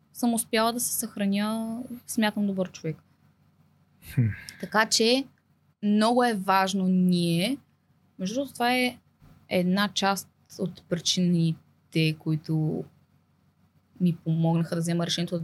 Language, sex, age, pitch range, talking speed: Bulgarian, female, 20-39, 175-220 Hz, 110 wpm